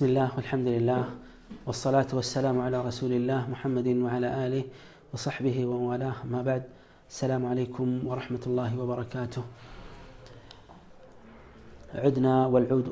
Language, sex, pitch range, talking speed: Amharic, male, 120-130 Hz, 105 wpm